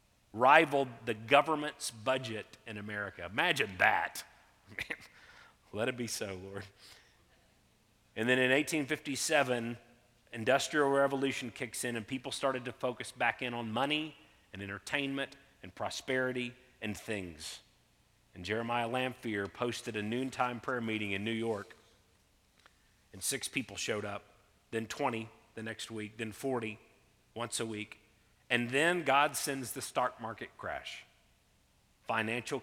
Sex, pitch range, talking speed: male, 110-135 Hz, 130 wpm